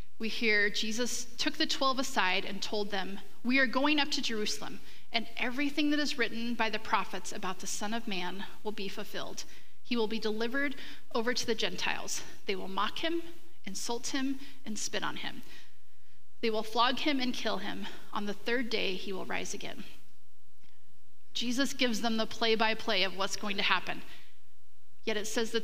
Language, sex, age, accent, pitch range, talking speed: English, female, 30-49, American, 205-255 Hz, 190 wpm